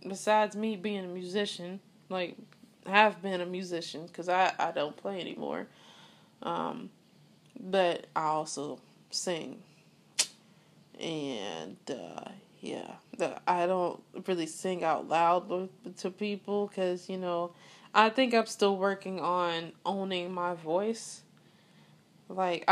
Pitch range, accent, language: 180-220 Hz, American, English